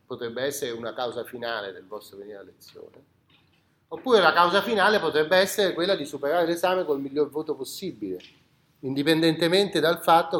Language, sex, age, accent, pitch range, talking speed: Italian, male, 40-59, native, 130-180 Hz, 155 wpm